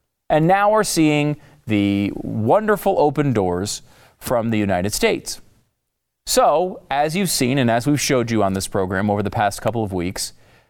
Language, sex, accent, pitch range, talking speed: English, male, American, 110-175 Hz, 170 wpm